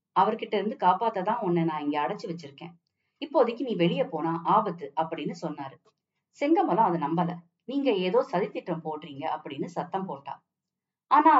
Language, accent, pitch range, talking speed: Tamil, native, 165-230 Hz, 135 wpm